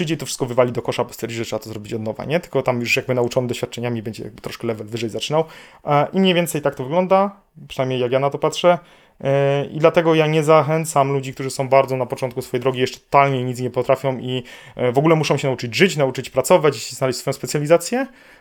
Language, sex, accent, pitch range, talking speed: Polish, male, native, 125-160 Hz, 230 wpm